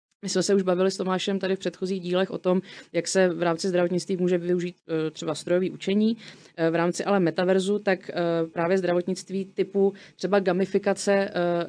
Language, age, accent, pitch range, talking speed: Czech, 20-39, native, 175-195 Hz, 170 wpm